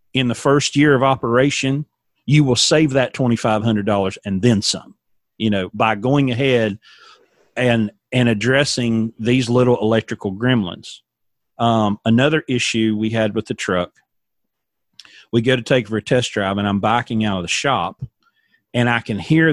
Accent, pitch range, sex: American, 105-125 Hz, male